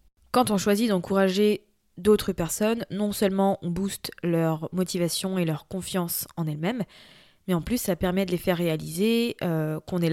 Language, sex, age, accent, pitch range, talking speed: French, female, 20-39, French, 170-205 Hz, 170 wpm